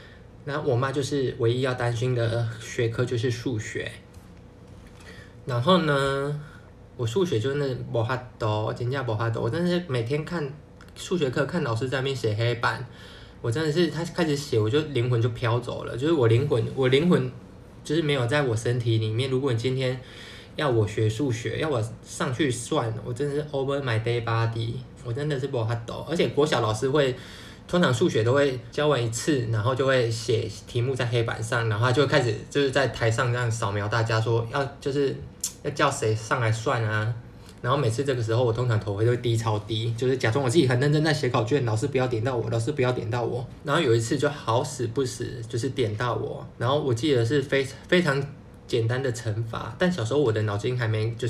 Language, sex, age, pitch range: Chinese, male, 20-39, 115-145 Hz